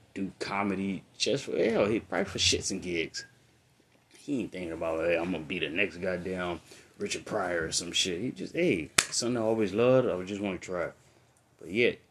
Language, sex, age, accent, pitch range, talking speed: English, male, 20-39, American, 90-115 Hz, 210 wpm